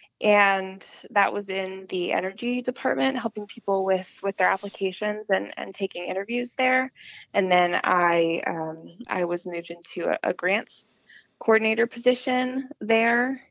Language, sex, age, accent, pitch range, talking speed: English, female, 20-39, American, 185-235 Hz, 140 wpm